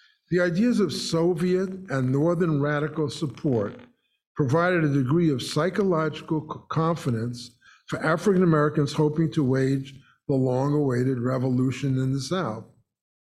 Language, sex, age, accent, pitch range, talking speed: English, male, 50-69, American, 130-165 Hz, 120 wpm